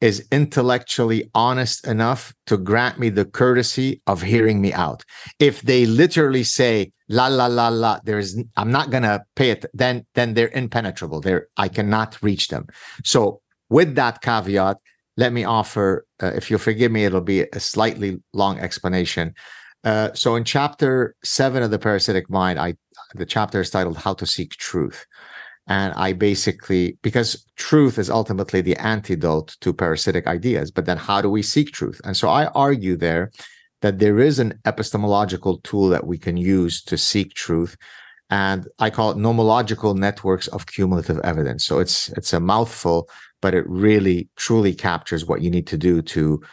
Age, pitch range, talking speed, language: 50-69, 95-120 Hz, 175 wpm, English